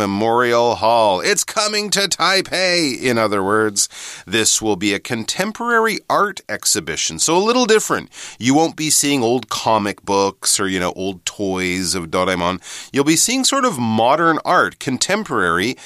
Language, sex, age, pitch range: Chinese, male, 30-49, 95-145 Hz